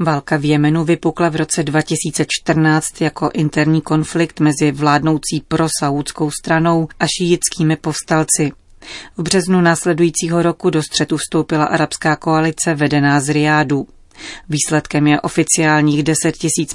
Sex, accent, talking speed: female, native, 120 wpm